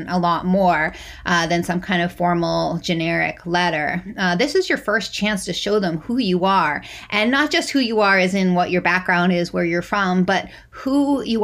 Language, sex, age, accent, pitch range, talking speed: English, female, 30-49, American, 175-215 Hz, 215 wpm